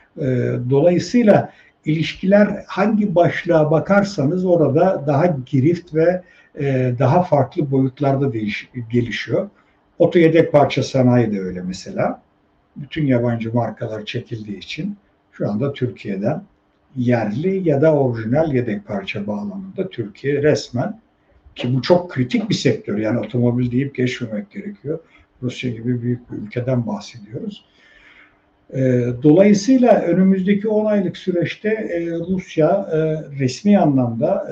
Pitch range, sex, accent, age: 120-170 Hz, male, native, 60-79